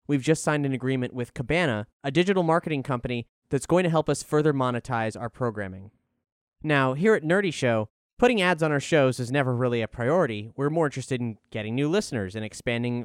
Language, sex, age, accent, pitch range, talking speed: English, male, 30-49, American, 125-160 Hz, 200 wpm